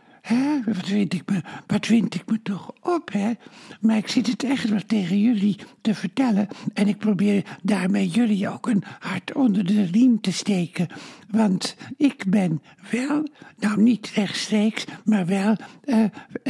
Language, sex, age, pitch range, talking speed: Dutch, male, 60-79, 205-245 Hz, 165 wpm